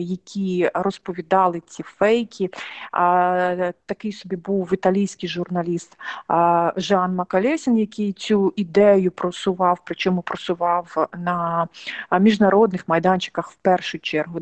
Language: Ukrainian